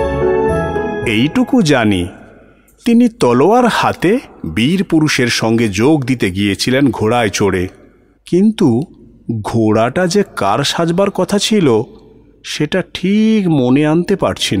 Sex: male